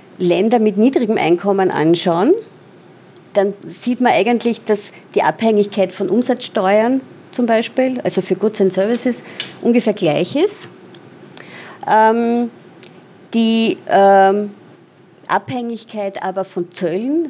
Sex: female